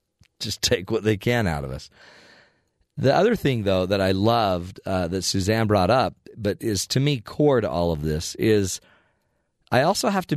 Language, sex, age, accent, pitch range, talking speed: English, male, 40-59, American, 105-140 Hz, 195 wpm